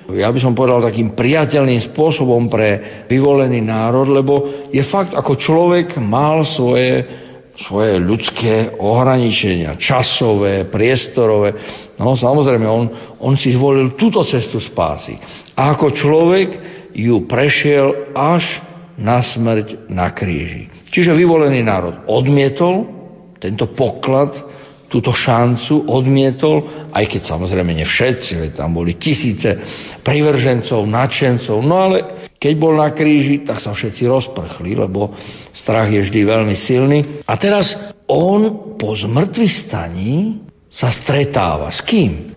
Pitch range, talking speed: 110-155 Hz, 120 wpm